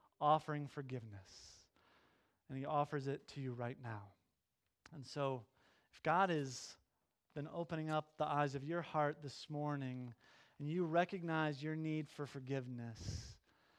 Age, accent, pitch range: 30-49, American, 130-160 Hz